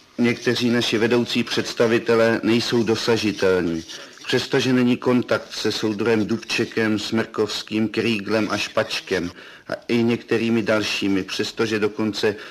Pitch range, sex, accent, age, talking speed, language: 110-125 Hz, male, native, 50-69, 105 wpm, Czech